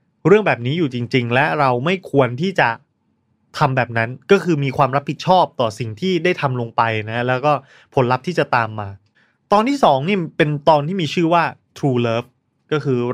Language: Thai